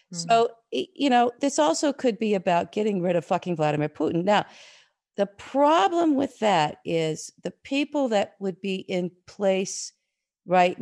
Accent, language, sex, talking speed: American, English, female, 155 wpm